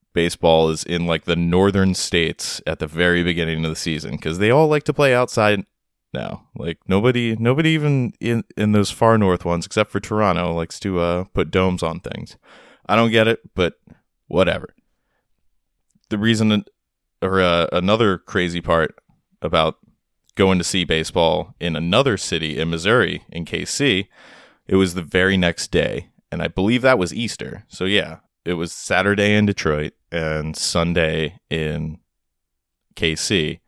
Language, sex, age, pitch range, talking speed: English, male, 20-39, 85-125 Hz, 160 wpm